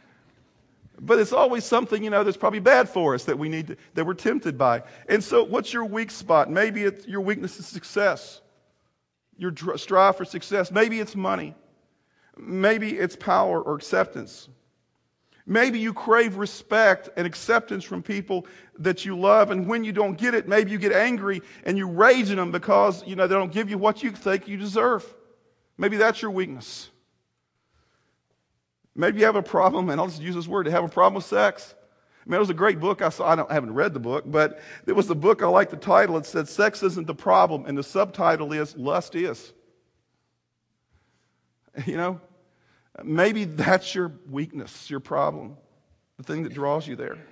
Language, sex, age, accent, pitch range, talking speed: English, male, 40-59, American, 170-215 Hz, 195 wpm